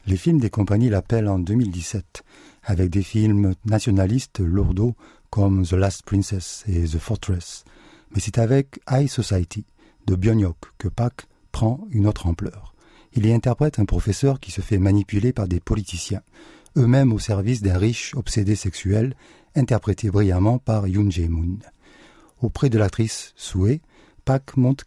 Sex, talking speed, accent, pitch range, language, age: male, 165 wpm, French, 95-120 Hz, French, 50-69